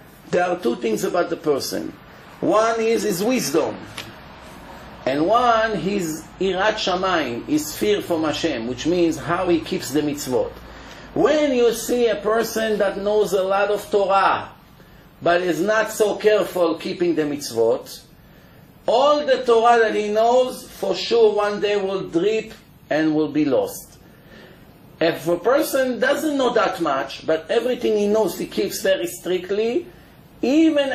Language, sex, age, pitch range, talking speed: English, male, 50-69, 160-225 Hz, 150 wpm